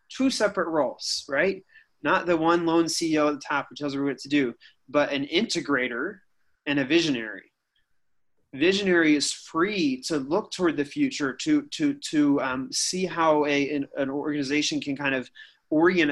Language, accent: English, American